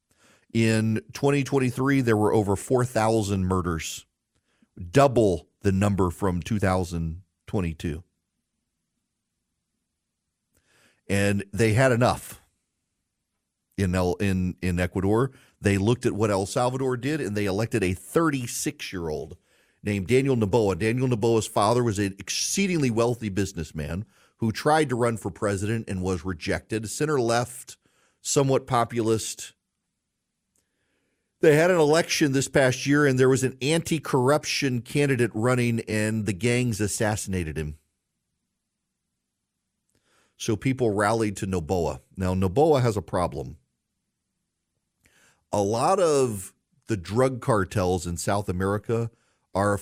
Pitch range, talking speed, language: 95-125 Hz, 120 wpm, English